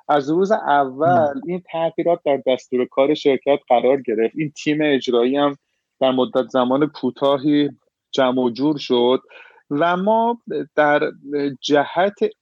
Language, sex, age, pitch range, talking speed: Persian, male, 30-49, 125-155 Hz, 125 wpm